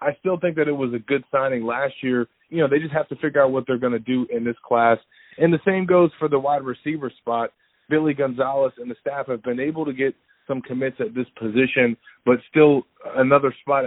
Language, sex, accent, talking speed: English, male, American, 240 wpm